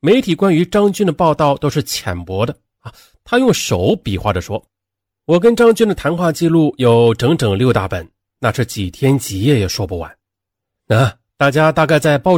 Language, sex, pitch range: Chinese, male, 100-150 Hz